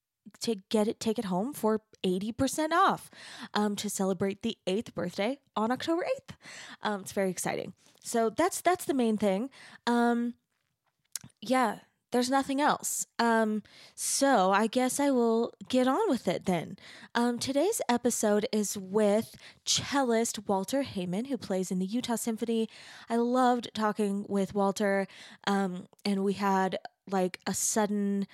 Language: English